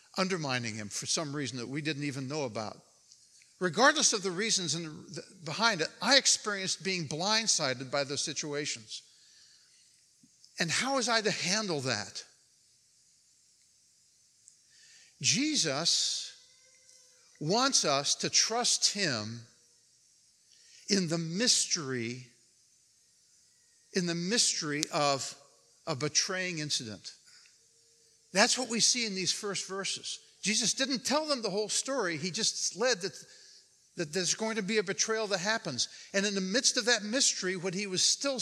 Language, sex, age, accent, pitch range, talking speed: English, male, 60-79, American, 155-230 Hz, 135 wpm